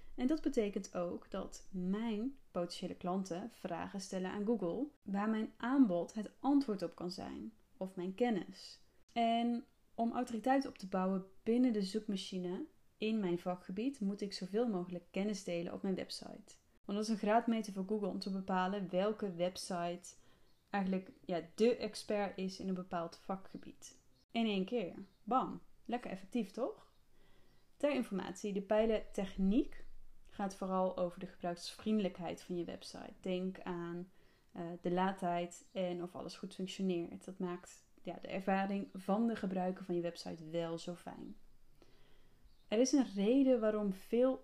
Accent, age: Dutch, 10-29